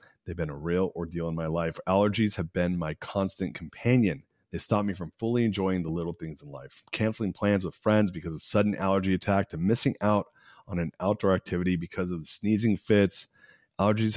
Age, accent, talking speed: 30-49, American, 195 wpm